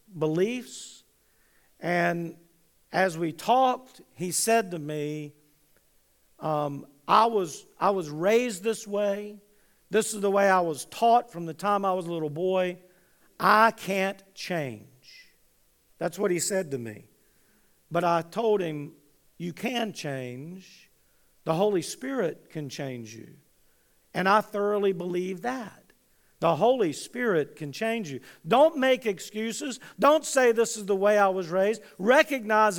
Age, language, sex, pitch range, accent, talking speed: 50-69, English, male, 180-230 Hz, American, 140 wpm